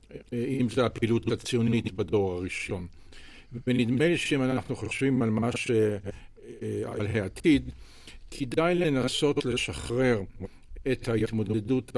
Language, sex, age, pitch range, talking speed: Hebrew, male, 60-79, 110-130 Hz, 100 wpm